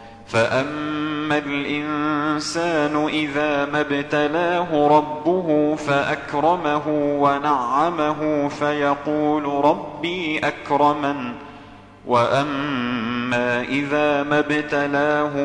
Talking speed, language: 50 wpm, English